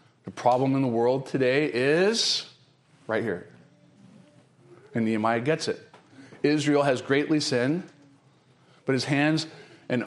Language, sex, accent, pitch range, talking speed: English, male, American, 130-160 Hz, 125 wpm